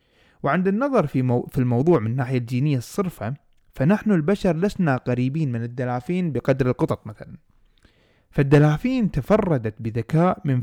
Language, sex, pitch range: Arabic, male, 125-175 Hz